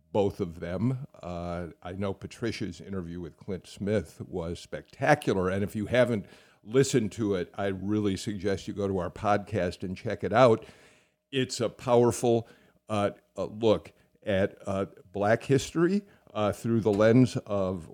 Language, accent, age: English, American, 50-69